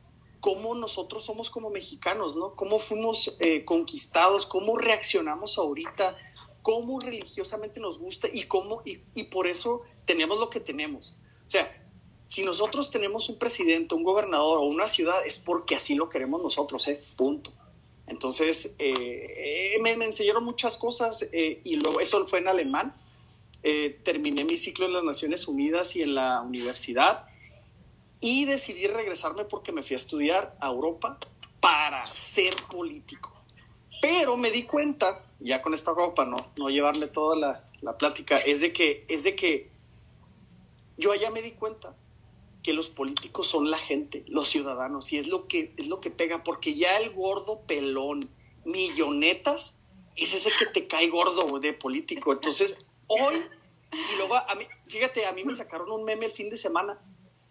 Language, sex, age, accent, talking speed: Spanish, male, 30-49, Mexican, 165 wpm